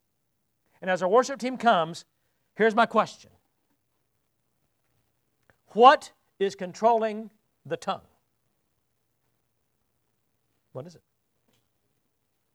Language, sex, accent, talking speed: English, male, American, 80 wpm